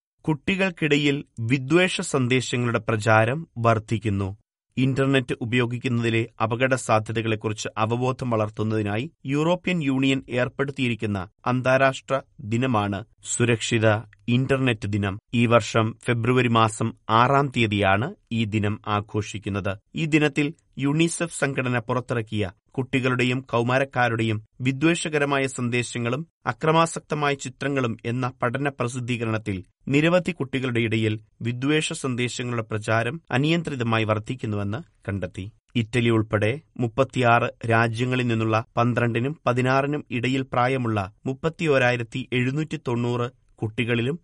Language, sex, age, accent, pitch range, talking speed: Malayalam, male, 30-49, native, 110-135 Hz, 85 wpm